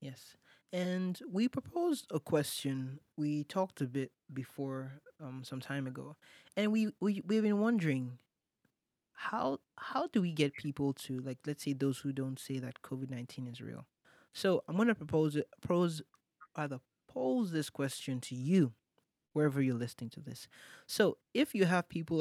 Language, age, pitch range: English, 20-39, 140-170 Hz